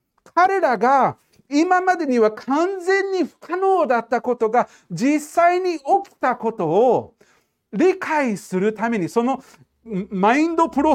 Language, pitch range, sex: Japanese, 155-240 Hz, male